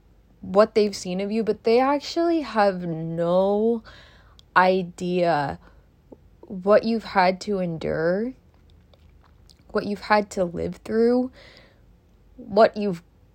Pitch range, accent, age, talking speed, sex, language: 160-230 Hz, American, 20-39, 110 wpm, female, English